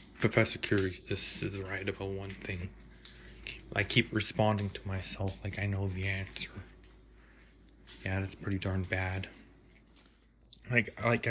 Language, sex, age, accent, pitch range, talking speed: English, male, 20-39, American, 95-115 Hz, 135 wpm